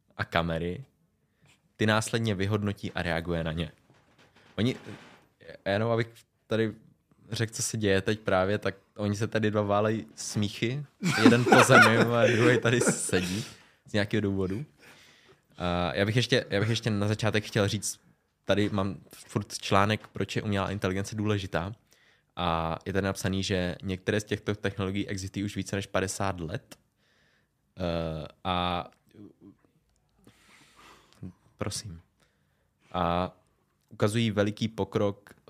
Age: 20-39